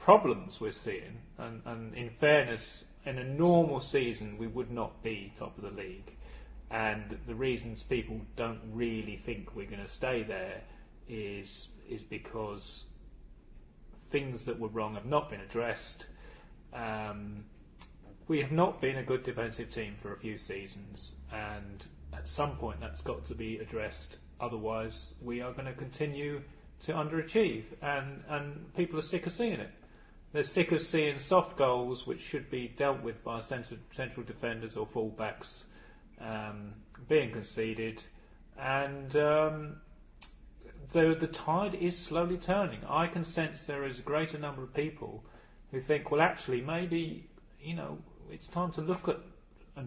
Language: English